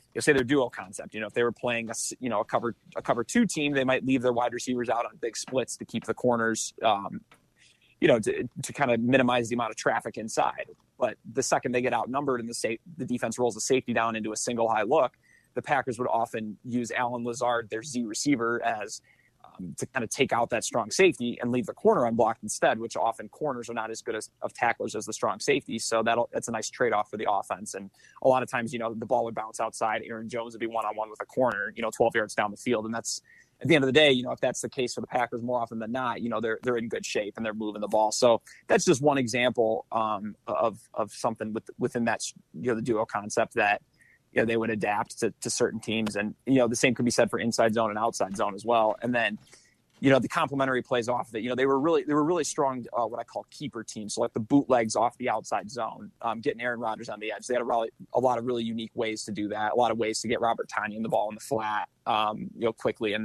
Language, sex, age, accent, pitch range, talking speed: English, male, 20-39, American, 110-125 Hz, 275 wpm